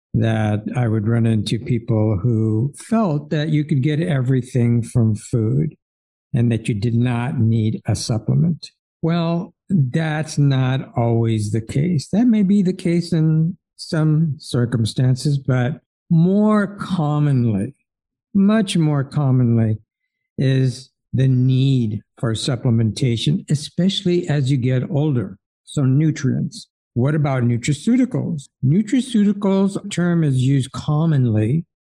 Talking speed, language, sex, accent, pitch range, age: 120 wpm, English, male, American, 115-155 Hz, 60-79